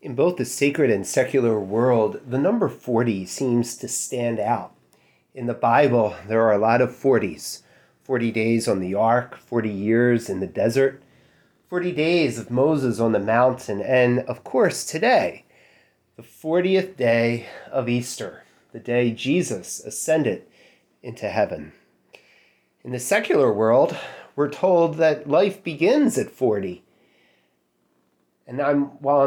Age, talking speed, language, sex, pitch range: 30-49, 140 wpm, English, male, 95-145 Hz